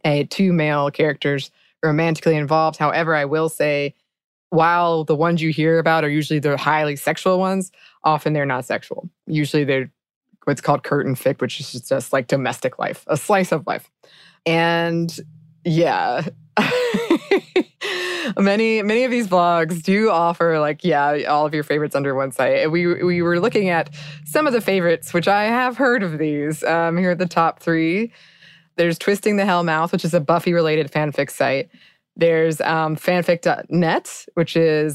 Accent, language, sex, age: American, English, female, 20-39